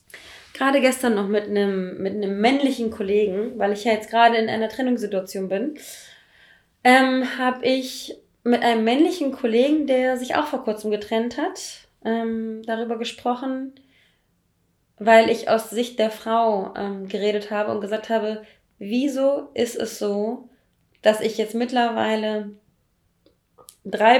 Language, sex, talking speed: German, female, 135 wpm